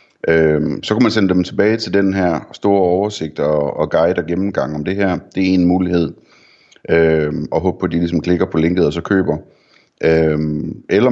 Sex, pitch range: male, 80-90 Hz